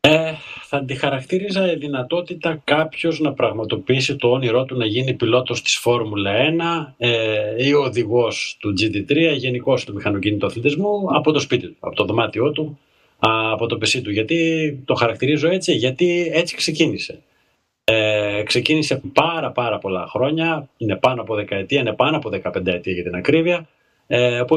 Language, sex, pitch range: Greek, male, 110-155 Hz